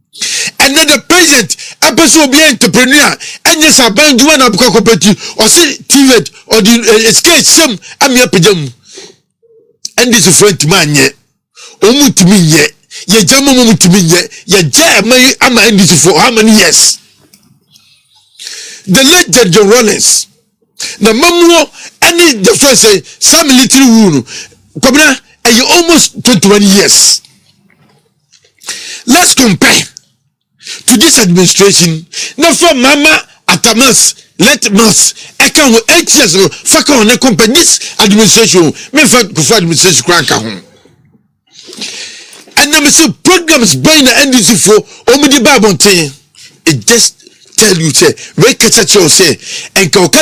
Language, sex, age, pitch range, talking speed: English, male, 50-69, 200-295 Hz, 85 wpm